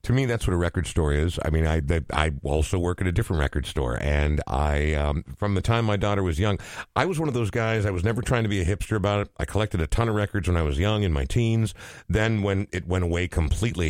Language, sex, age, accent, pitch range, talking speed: English, male, 50-69, American, 85-110 Hz, 275 wpm